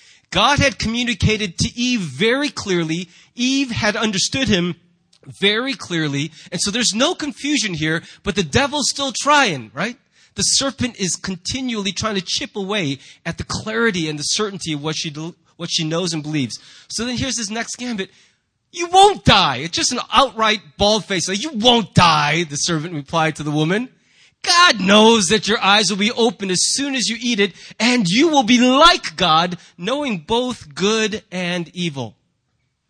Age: 30-49